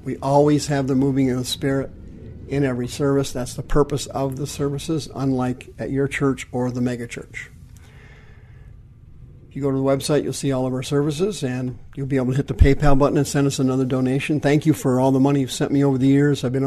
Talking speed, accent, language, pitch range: 235 wpm, American, English, 125-140 Hz